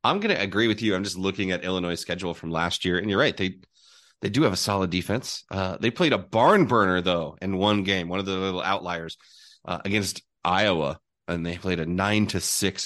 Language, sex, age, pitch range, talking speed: English, male, 30-49, 90-110 Hz, 235 wpm